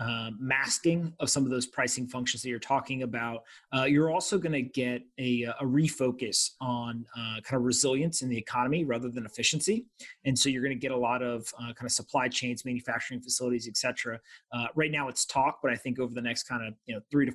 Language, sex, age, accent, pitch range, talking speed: English, male, 30-49, American, 120-140 Hz, 220 wpm